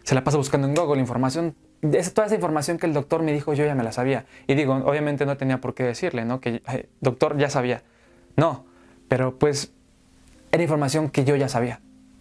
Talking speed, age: 220 wpm, 20-39